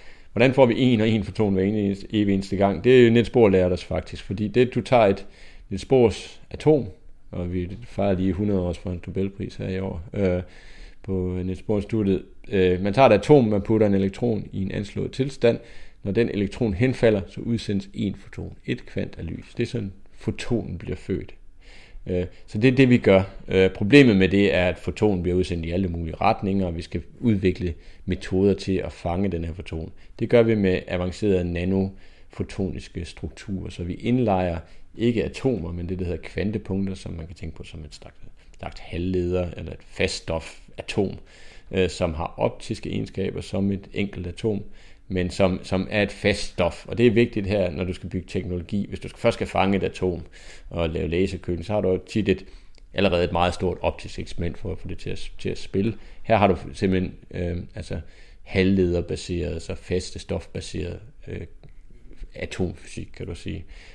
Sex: male